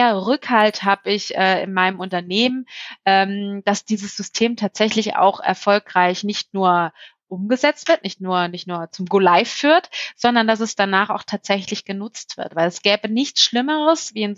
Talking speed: 165 wpm